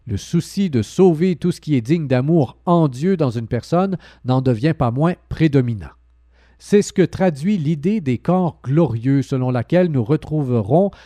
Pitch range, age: 125-175 Hz, 40-59